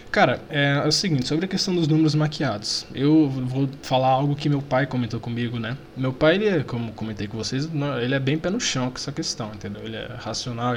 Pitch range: 120-155 Hz